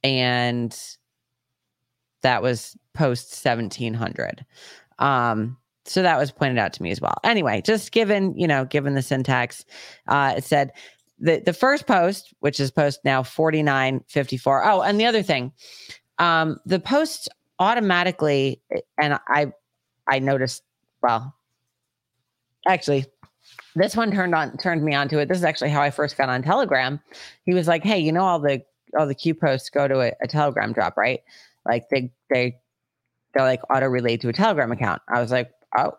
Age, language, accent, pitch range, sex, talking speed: 30-49, English, American, 125-165 Hz, female, 170 wpm